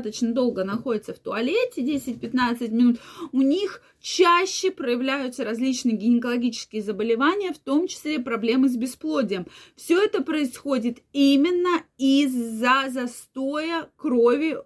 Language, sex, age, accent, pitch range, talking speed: Russian, female, 20-39, native, 225-275 Hz, 105 wpm